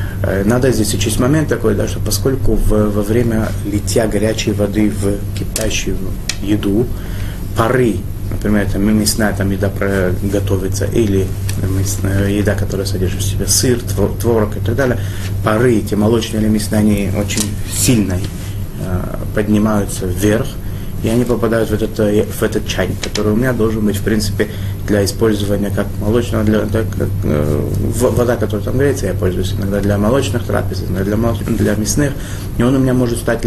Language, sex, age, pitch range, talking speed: Russian, male, 30-49, 100-110 Hz, 145 wpm